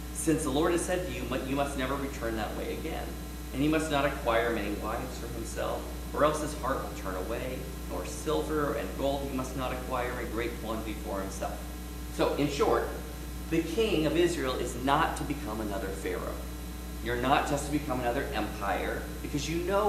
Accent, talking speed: American, 200 wpm